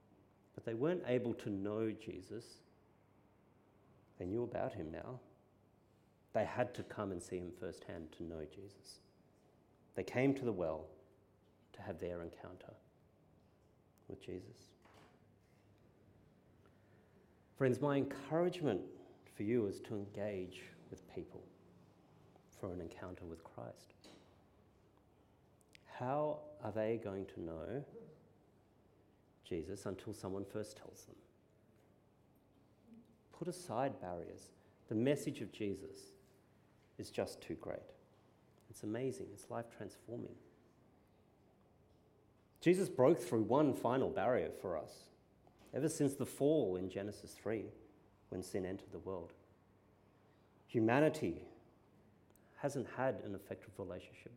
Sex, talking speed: male, 115 wpm